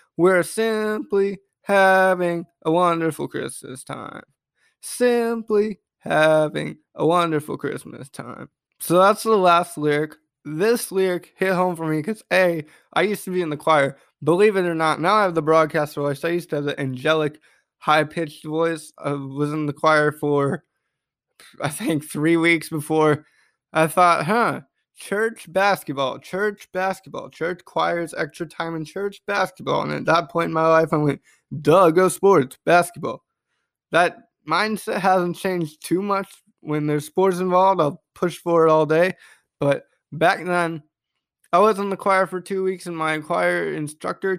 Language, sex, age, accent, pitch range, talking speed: English, male, 20-39, American, 150-185 Hz, 160 wpm